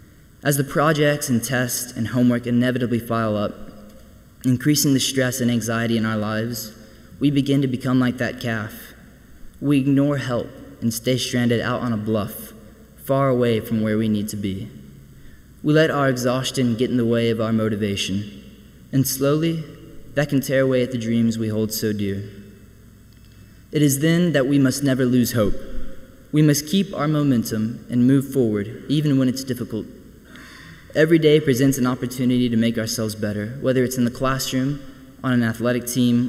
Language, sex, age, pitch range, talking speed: English, male, 20-39, 110-135 Hz, 175 wpm